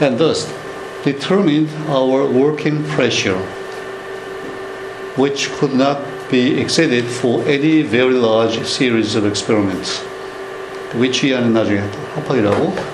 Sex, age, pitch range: male, 60-79, 115-150 Hz